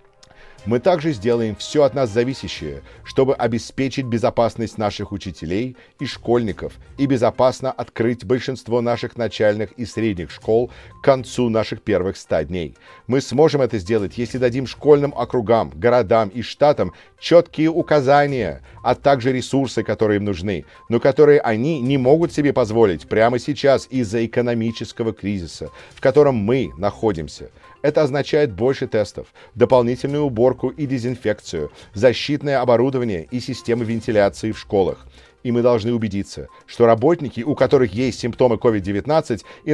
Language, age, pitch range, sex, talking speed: English, 50-69, 110-135 Hz, male, 135 wpm